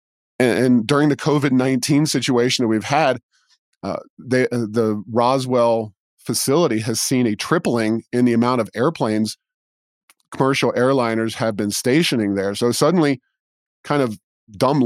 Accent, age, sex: American, 40-59, male